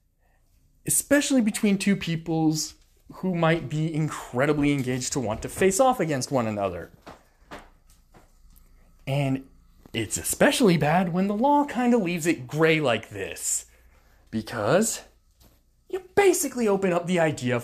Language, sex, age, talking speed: English, male, 20-39, 130 wpm